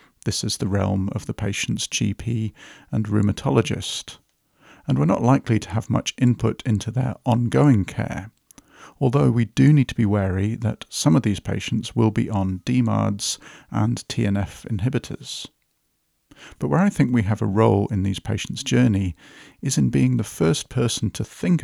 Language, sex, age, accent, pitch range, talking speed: English, male, 50-69, British, 100-125 Hz, 170 wpm